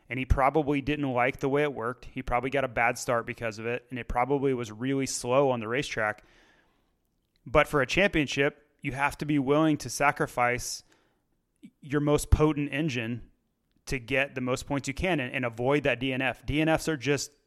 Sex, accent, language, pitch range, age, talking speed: male, American, English, 125-150 Hz, 30-49, 195 wpm